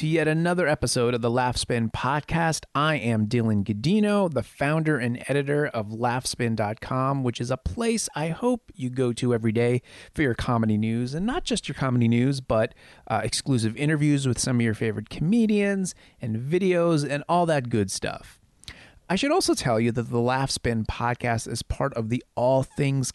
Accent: American